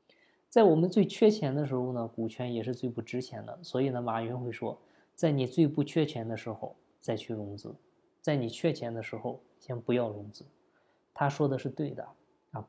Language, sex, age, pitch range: Chinese, male, 20-39, 120-155 Hz